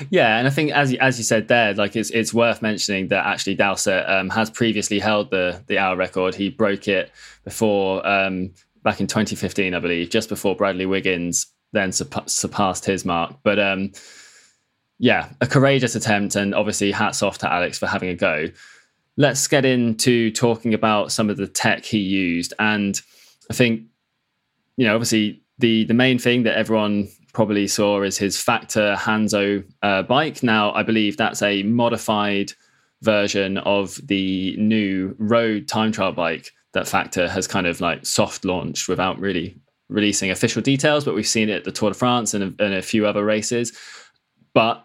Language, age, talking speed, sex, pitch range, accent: English, 20-39, 180 wpm, male, 95-115 Hz, British